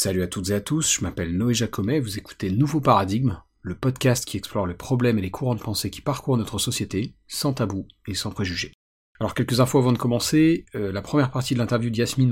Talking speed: 230 wpm